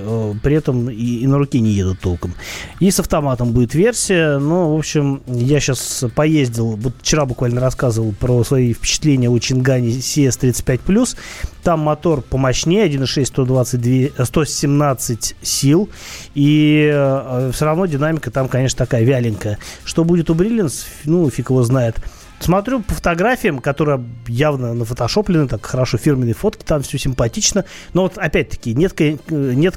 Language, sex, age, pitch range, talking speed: Russian, male, 30-49, 120-150 Hz, 140 wpm